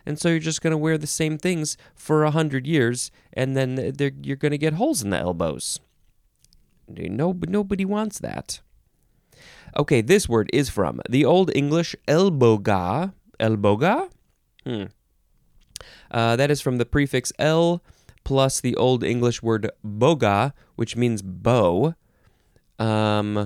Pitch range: 110-155 Hz